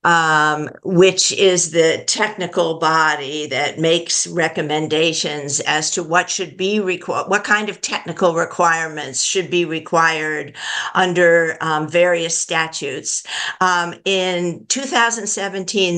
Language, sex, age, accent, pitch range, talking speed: English, female, 50-69, American, 165-190 Hz, 115 wpm